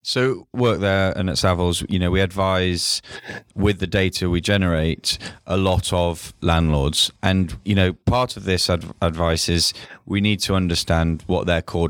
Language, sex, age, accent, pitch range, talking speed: English, male, 20-39, British, 85-95 Hz, 170 wpm